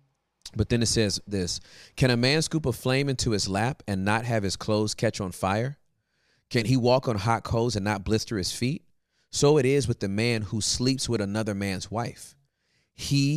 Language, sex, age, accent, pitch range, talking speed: English, male, 30-49, American, 95-130 Hz, 205 wpm